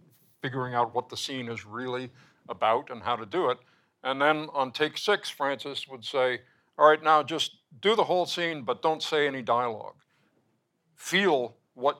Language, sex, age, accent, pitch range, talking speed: English, male, 60-79, American, 125-150 Hz, 180 wpm